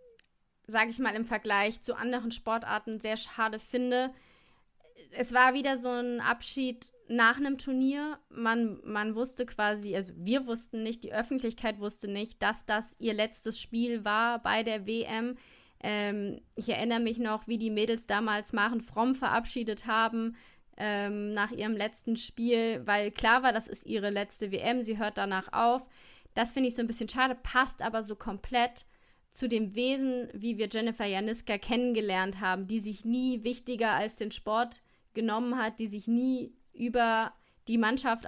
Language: German